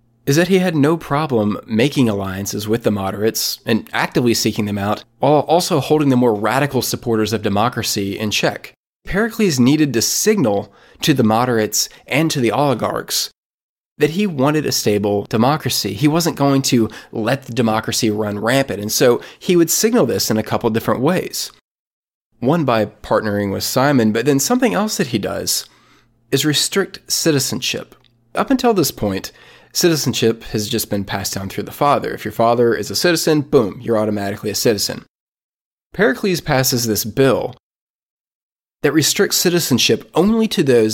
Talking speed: 165 wpm